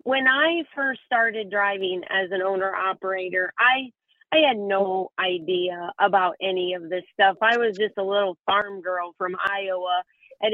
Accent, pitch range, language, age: American, 185-225 Hz, English, 40-59